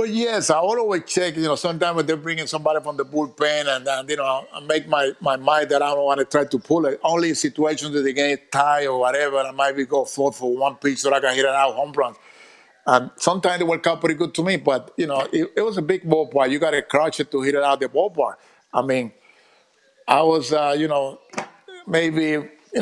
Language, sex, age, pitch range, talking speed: English, male, 50-69, 140-165 Hz, 250 wpm